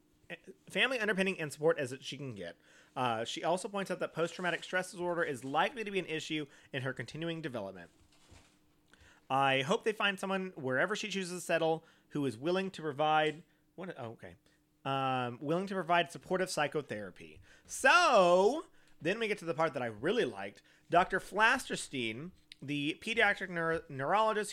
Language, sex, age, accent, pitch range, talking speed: English, male, 30-49, American, 135-185 Hz, 160 wpm